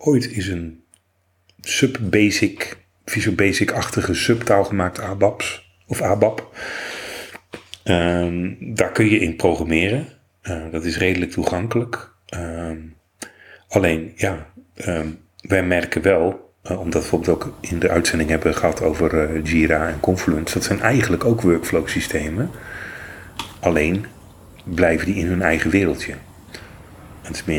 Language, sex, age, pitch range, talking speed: Dutch, male, 40-59, 80-95 Hz, 120 wpm